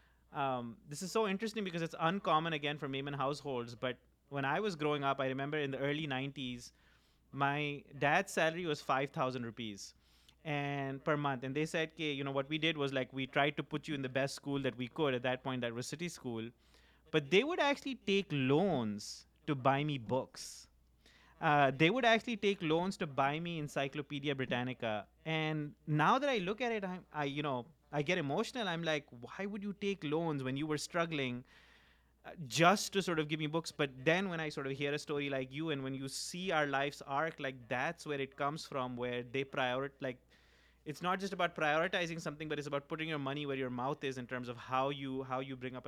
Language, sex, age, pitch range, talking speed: Urdu, male, 30-49, 130-160 Hz, 220 wpm